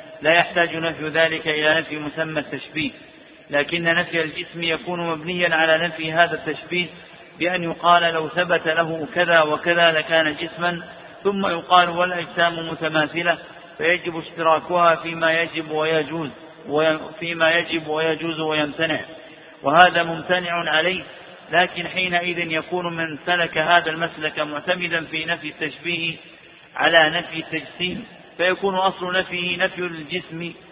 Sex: male